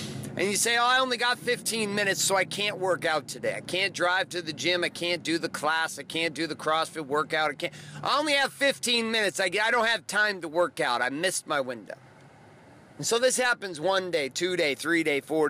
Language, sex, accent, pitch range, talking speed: English, male, American, 160-210 Hz, 235 wpm